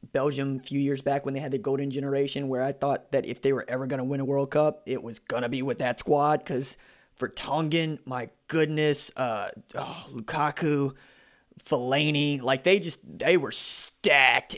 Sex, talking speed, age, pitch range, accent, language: male, 195 wpm, 20-39, 140-220 Hz, American, English